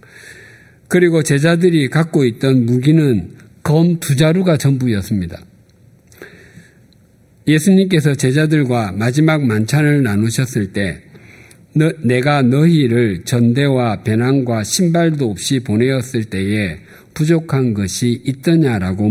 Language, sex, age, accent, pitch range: Korean, male, 50-69, native, 110-150 Hz